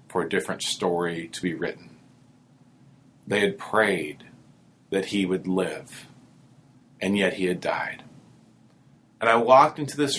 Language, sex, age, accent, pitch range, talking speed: English, male, 30-49, American, 95-130 Hz, 135 wpm